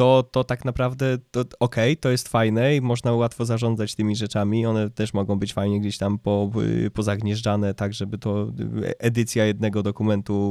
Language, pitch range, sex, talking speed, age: Polish, 105-130 Hz, male, 170 wpm, 20-39